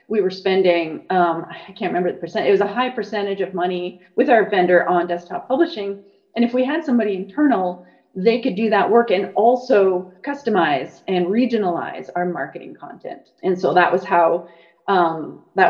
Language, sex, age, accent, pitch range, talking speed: English, female, 30-49, American, 180-220 Hz, 170 wpm